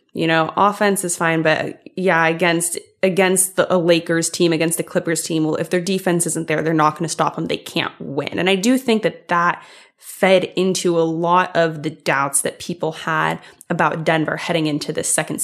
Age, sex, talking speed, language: 20-39, female, 210 wpm, English